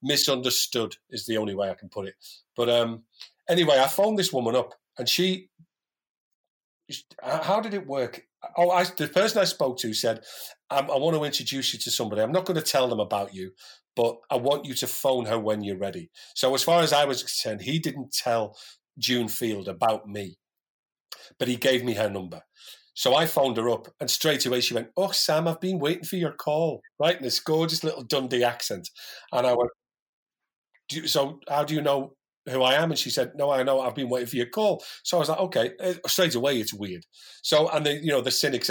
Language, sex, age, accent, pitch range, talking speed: English, male, 40-59, British, 115-155 Hz, 220 wpm